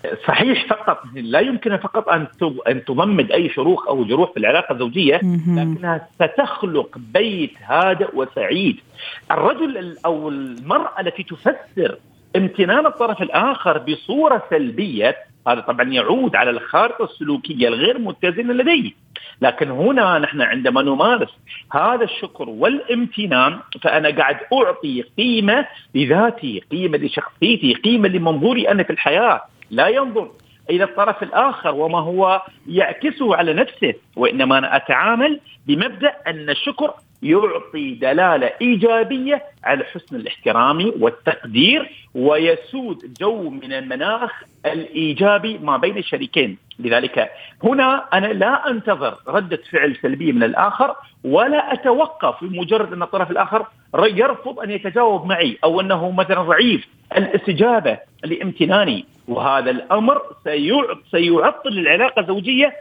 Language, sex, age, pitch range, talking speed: Arabic, male, 50-69, 175-265 Hz, 115 wpm